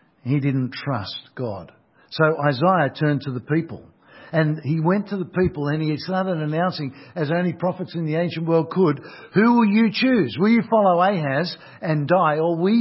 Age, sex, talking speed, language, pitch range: 50-69, male, 185 wpm, English, 125-175 Hz